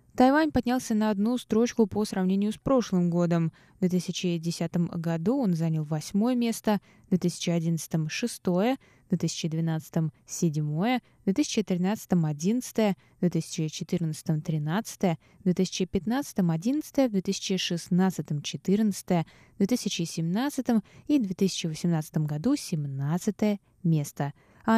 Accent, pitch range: native, 175-230 Hz